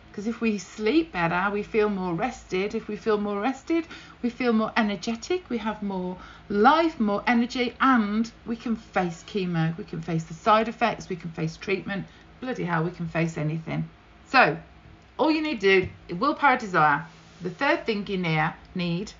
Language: English